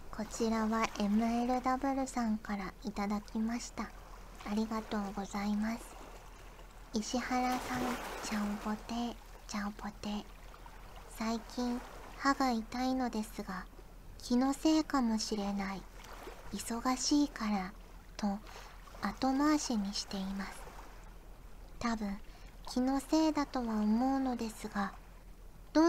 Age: 40-59